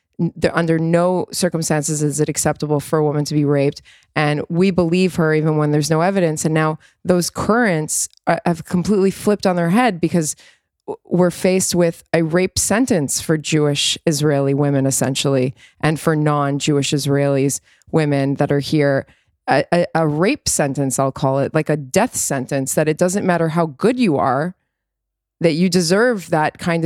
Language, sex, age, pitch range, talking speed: English, female, 20-39, 150-180 Hz, 170 wpm